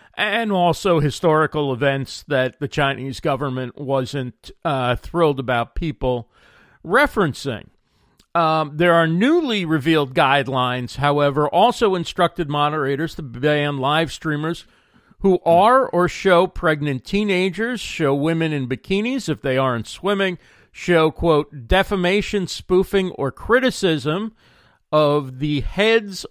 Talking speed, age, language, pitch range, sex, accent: 115 wpm, 50-69, English, 140-175 Hz, male, American